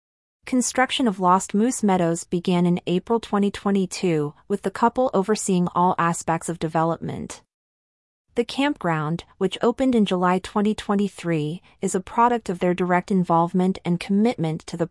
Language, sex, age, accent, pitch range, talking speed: English, female, 30-49, American, 170-210 Hz, 140 wpm